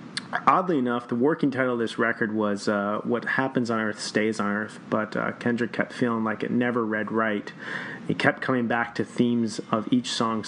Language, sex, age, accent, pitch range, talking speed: English, male, 30-49, American, 105-125 Hz, 205 wpm